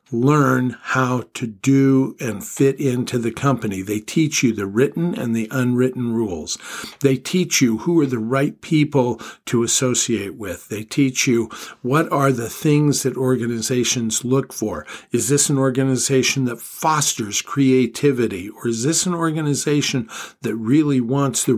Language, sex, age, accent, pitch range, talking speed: English, male, 50-69, American, 115-140 Hz, 155 wpm